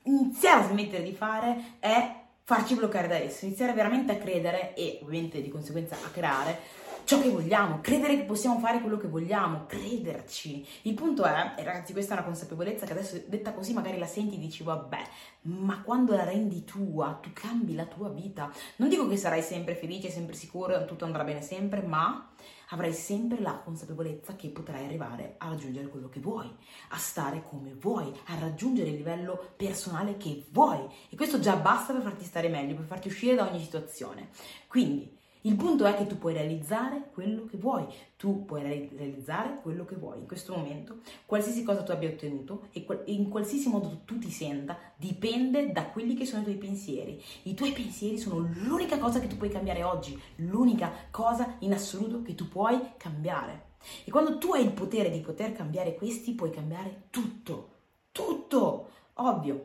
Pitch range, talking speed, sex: 165-225 Hz, 185 wpm, female